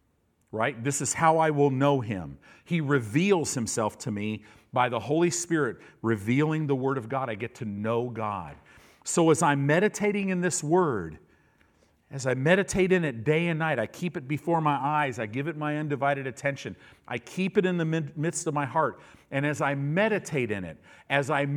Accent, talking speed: American, 200 wpm